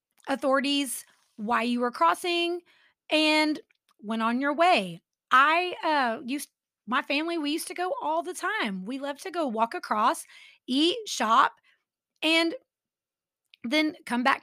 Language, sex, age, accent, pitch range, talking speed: English, female, 30-49, American, 235-315 Hz, 140 wpm